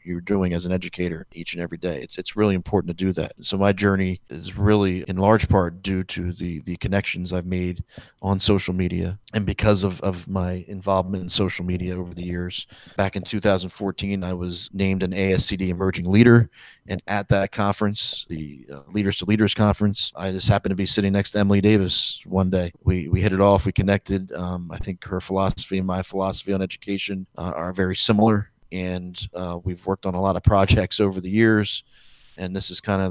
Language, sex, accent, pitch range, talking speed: English, male, American, 90-100 Hz, 210 wpm